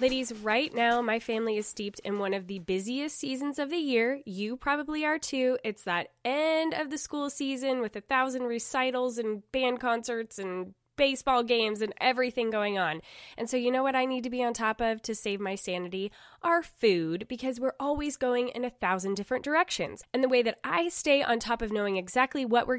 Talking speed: 215 wpm